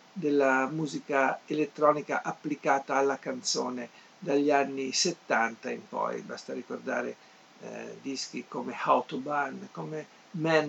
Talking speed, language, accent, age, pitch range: 105 wpm, Italian, native, 50-69, 135-165 Hz